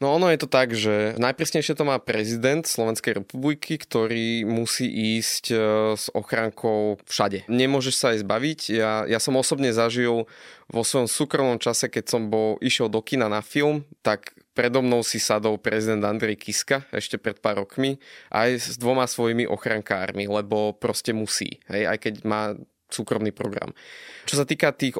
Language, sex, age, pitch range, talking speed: Slovak, male, 20-39, 110-130 Hz, 165 wpm